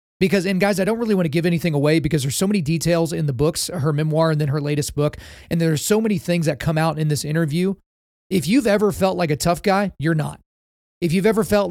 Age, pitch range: 30-49, 150-180 Hz